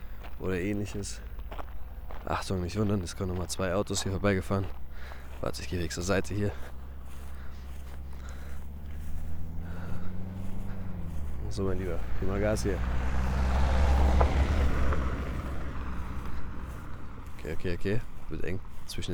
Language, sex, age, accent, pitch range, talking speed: German, male, 20-39, German, 75-100 Hz, 105 wpm